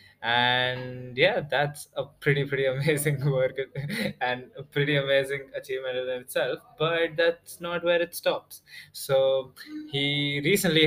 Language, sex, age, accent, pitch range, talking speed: English, male, 20-39, Indian, 120-145 Hz, 130 wpm